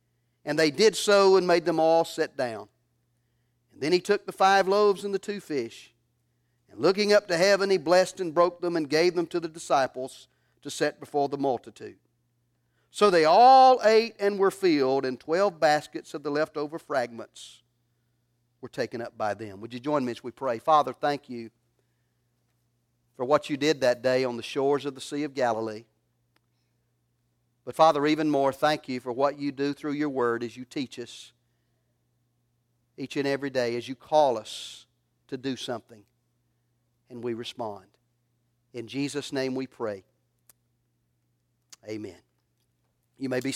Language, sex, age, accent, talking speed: English, male, 40-59, American, 170 wpm